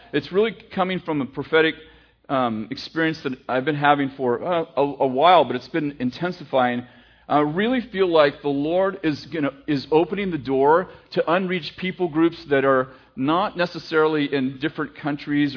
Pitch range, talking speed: 140-170 Hz, 170 wpm